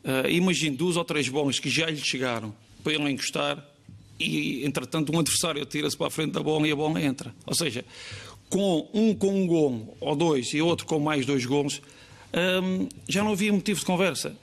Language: Portuguese